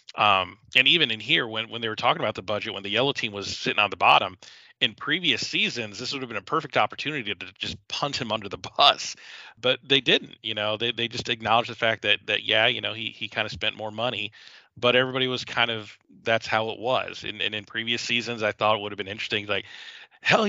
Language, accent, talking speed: English, American, 250 wpm